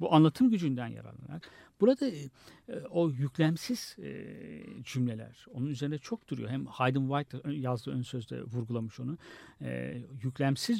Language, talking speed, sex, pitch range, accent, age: Turkish, 135 wpm, male, 120-160 Hz, native, 60-79